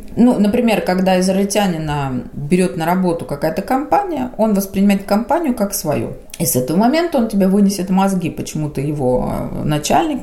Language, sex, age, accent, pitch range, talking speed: Russian, female, 30-49, native, 170-215 Hz, 155 wpm